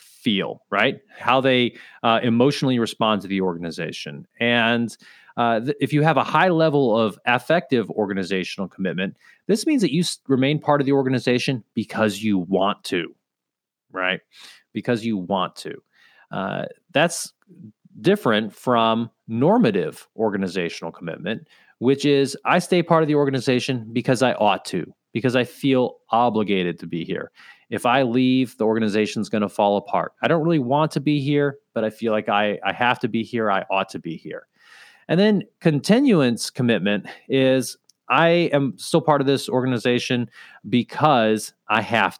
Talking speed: 160 wpm